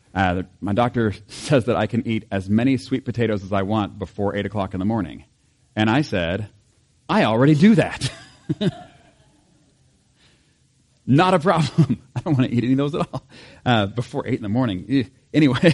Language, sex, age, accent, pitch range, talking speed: English, male, 40-59, American, 105-135 Hz, 185 wpm